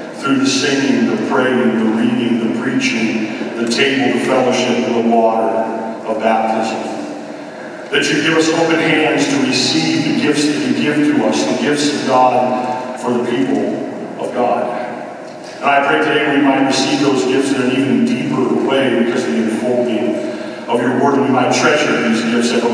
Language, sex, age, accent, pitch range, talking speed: English, male, 50-69, American, 125-160 Hz, 185 wpm